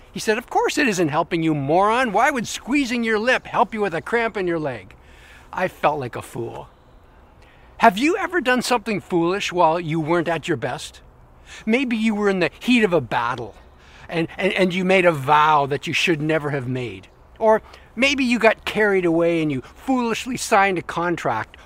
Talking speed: 200 wpm